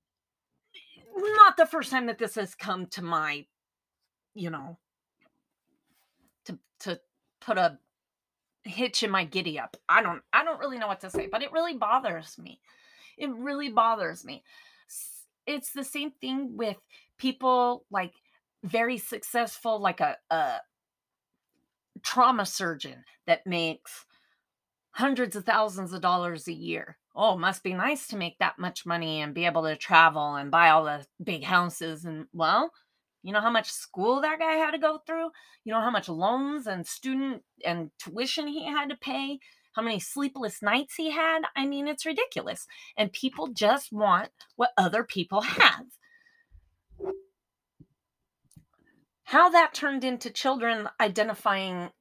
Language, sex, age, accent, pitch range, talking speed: English, female, 30-49, American, 180-280 Hz, 150 wpm